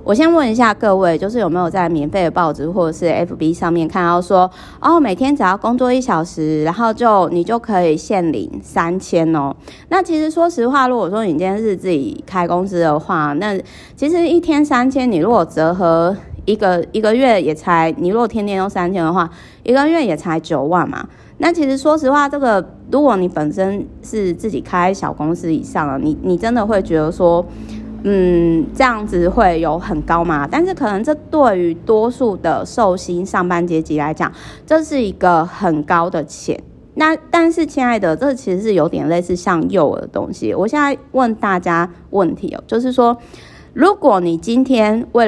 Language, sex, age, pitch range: Chinese, female, 30-49, 170-245 Hz